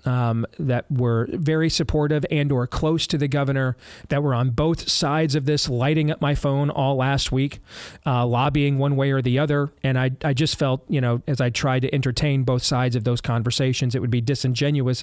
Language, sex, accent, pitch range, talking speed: English, male, American, 120-145 Hz, 210 wpm